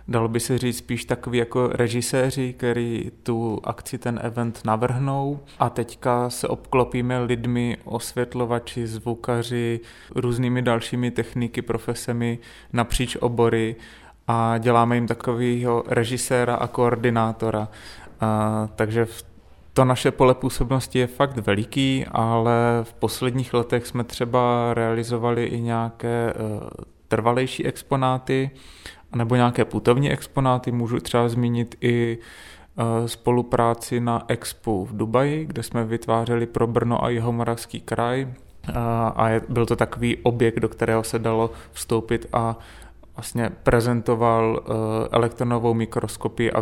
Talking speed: 115 wpm